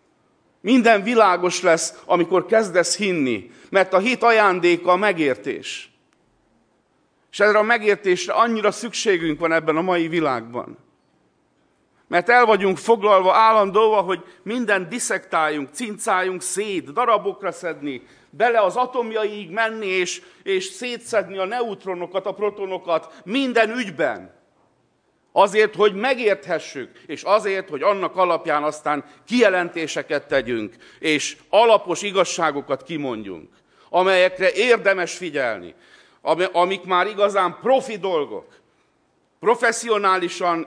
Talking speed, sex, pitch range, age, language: 105 wpm, male, 170-215 Hz, 50-69, Hungarian